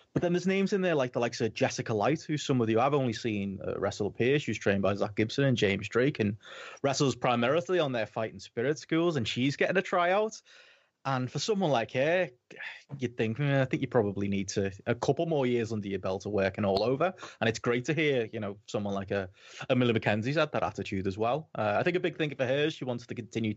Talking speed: 250 wpm